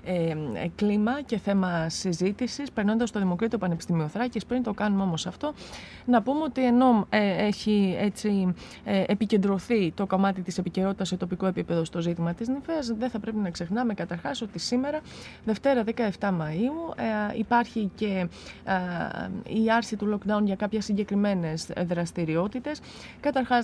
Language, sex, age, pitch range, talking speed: Greek, female, 20-39, 180-230 Hz, 140 wpm